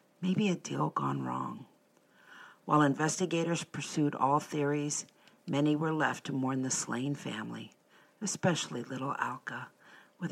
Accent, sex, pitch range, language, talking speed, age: American, female, 140-175 Hz, English, 130 wpm, 50-69